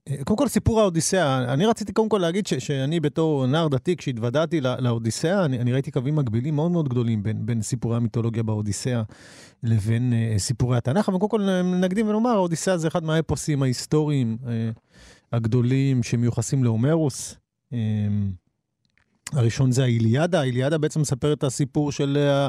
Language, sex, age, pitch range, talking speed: Hebrew, male, 40-59, 120-155 Hz, 155 wpm